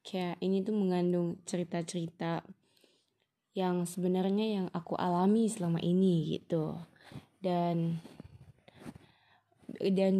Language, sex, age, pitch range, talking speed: Indonesian, female, 20-39, 170-200 Hz, 90 wpm